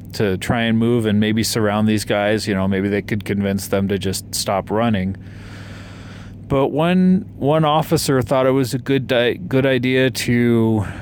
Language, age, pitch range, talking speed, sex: English, 30-49, 95-120 Hz, 180 wpm, male